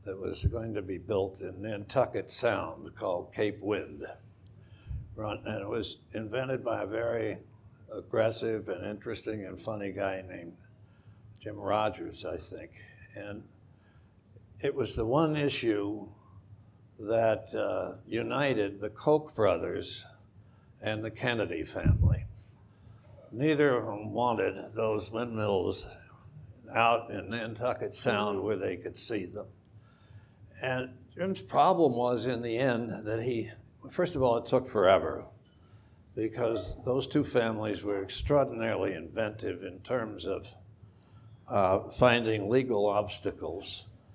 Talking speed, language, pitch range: 120 wpm, English, 105-120 Hz